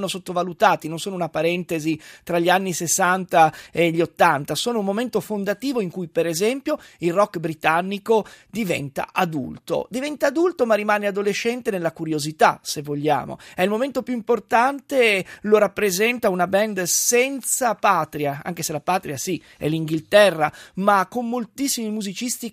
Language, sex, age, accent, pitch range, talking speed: Italian, male, 30-49, native, 170-220 Hz, 150 wpm